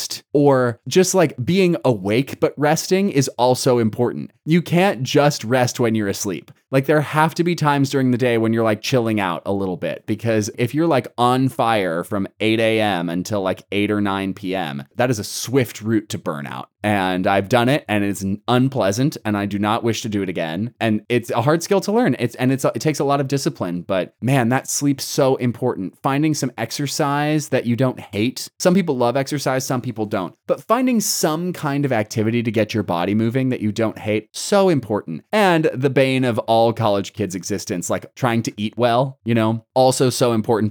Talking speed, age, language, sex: 210 wpm, 20-39, English, male